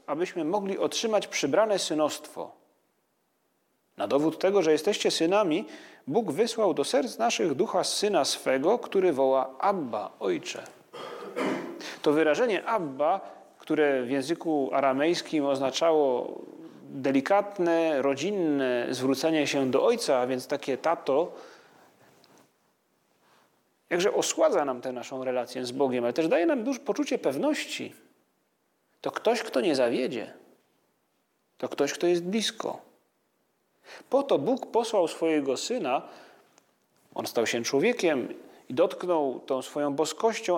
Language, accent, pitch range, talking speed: Polish, native, 135-205 Hz, 120 wpm